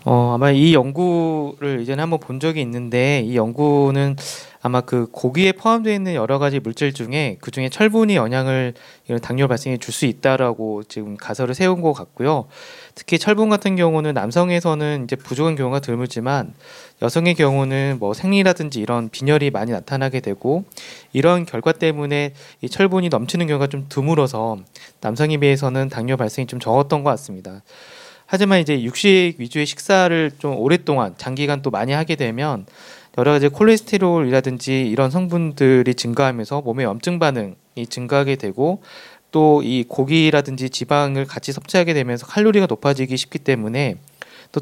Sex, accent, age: male, native, 30-49